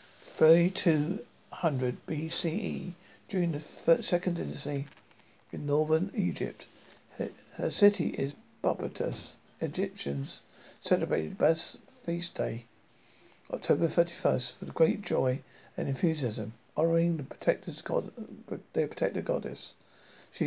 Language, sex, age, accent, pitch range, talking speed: English, male, 50-69, British, 135-175 Hz, 105 wpm